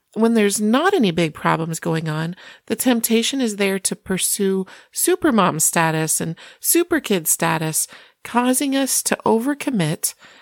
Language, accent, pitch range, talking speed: English, American, 180-225 Hz, 145 wpm